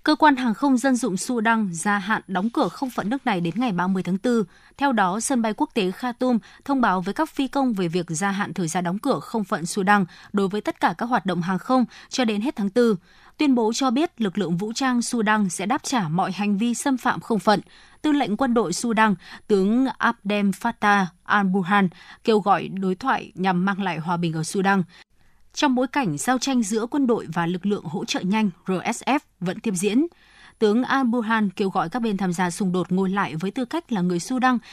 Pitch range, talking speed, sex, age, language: 190-255 Hz, 230 wpm, female, 20-39, Vietnamese